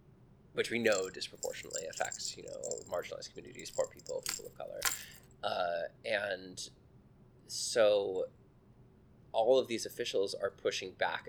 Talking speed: 130 wpm